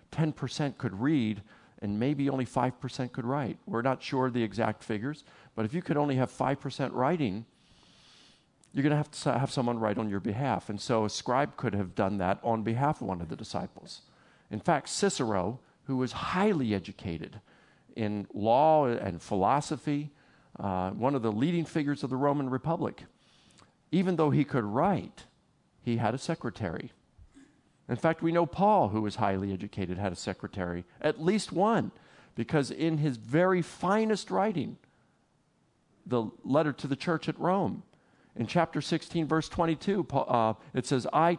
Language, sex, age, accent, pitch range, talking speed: English, male, 50-69, American, 110-155 Hz, 170 wpm